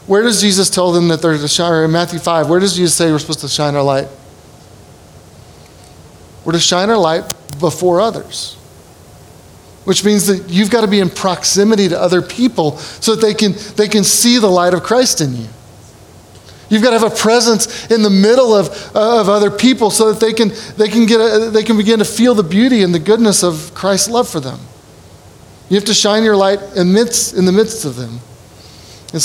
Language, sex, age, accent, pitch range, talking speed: English, male, 30-49, American, 160-215 Hz, 215 wpm